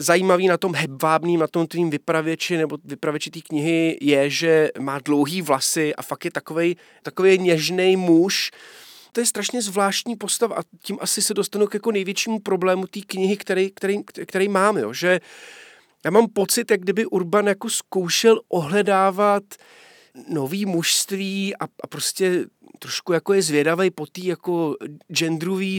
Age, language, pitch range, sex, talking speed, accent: 40-59, Czech, 165-205 Hz, male, 155 wpm, native